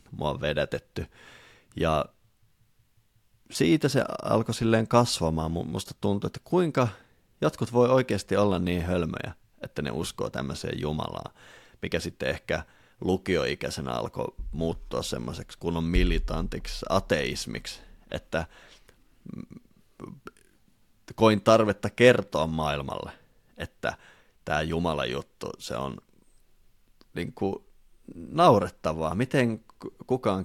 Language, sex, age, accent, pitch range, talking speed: Finnish, male, 30-49, native, 85-110 Hz, 95 wpm